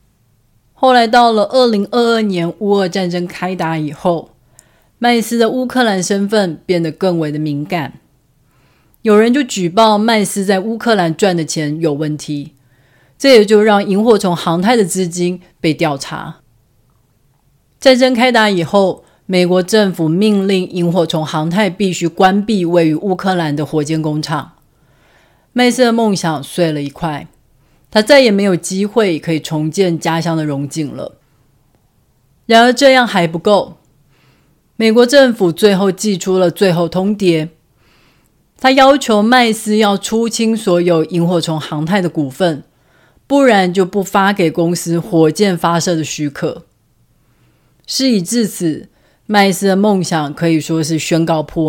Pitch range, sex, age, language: 155-210 Hz, female, 30-49, Chinese